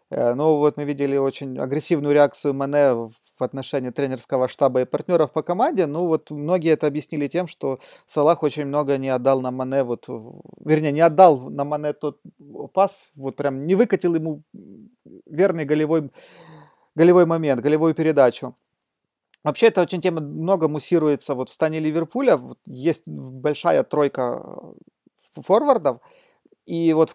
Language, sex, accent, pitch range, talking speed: Russian, male, native, 140-170 Hz, 150 wpm